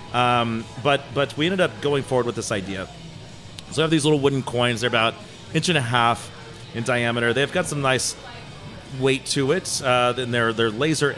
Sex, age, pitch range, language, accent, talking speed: male, 30-49, 120-145 Hz, English, American, 210 wpm